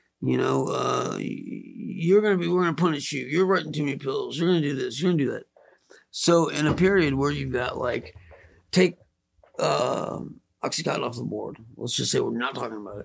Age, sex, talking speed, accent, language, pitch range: 50-69, male, 200 wpm, American, English, 125-180 Hz